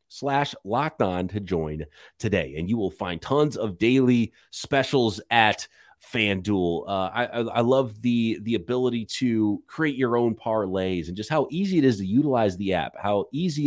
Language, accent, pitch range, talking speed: English, American, 100-145 Hz, 180 wpm